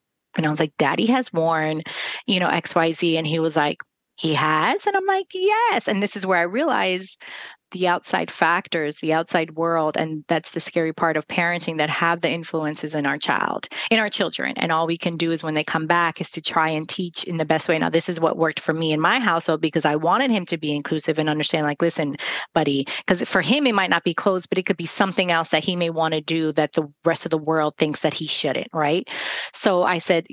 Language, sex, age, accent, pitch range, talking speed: English, female, 30-49, American, 160-200 Hz, 250 wpm